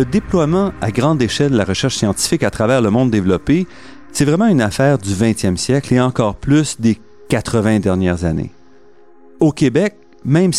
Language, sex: French, male